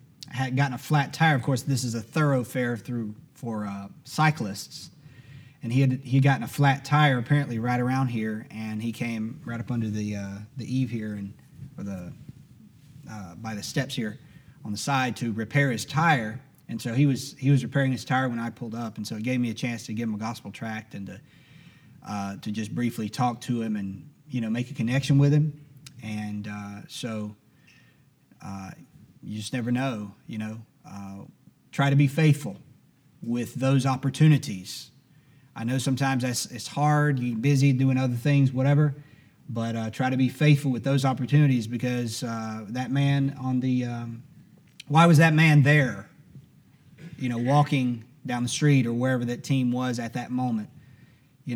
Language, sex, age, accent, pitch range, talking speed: English, male, 30-49, American, 115-140 Hz, 190 wpm